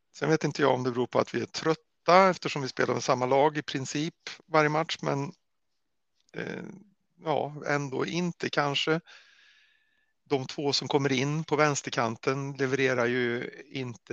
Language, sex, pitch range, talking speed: Swedish, male, 120-155 Hz, 160 wpm